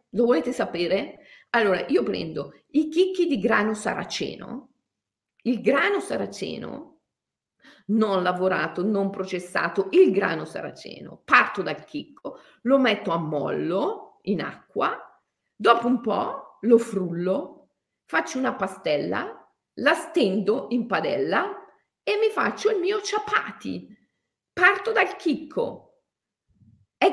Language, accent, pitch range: Italian, native, 190-295 Hz